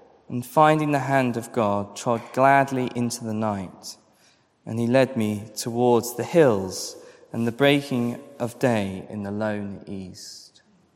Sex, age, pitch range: male, 20-39, 120-165 Hz